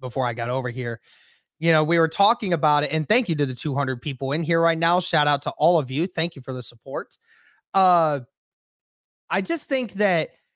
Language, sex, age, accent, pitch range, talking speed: English, male, 20-39, American, 150-195 Hz, 220 wpm